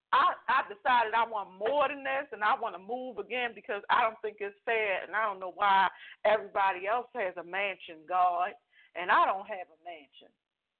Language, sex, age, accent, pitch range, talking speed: English, female, 40-59, American, 175-255 Hz, 205 wpm